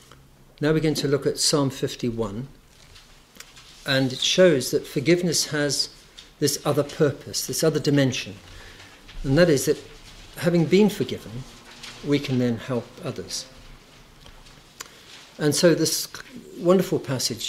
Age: 50-69